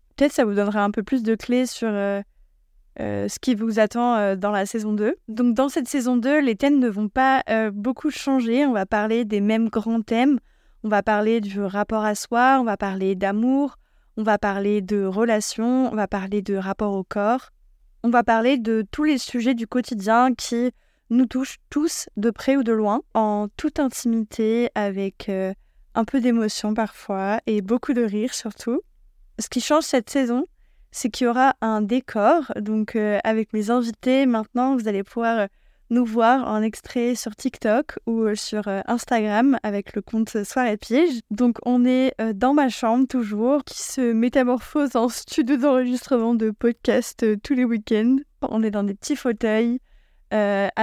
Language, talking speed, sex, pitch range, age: French, 185 wpm, female, 215-255 Hz, 20-39